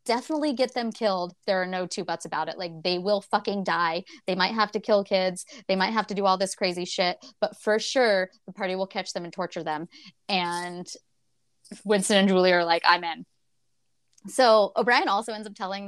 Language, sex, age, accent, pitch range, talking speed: English, female, 20-39, American, 180-225 Hz, 210 wpm